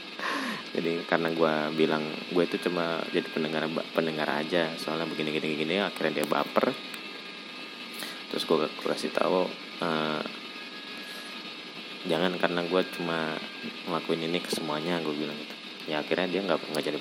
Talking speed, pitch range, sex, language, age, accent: 140 wpm, 80-95 Hz, male, Indonesian, 20-39, native